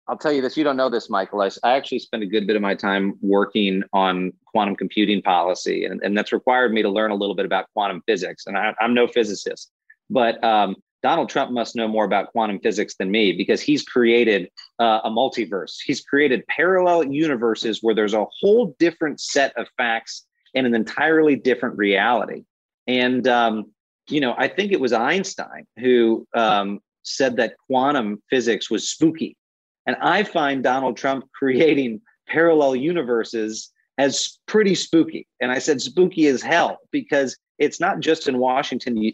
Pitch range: 110-160 Hz